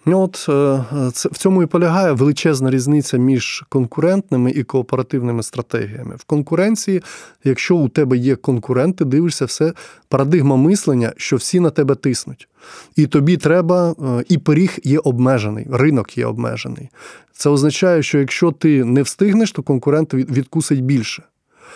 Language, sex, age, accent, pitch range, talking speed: Ukrainian, male, 20-39, native, 125-160 Hz, 135 wpm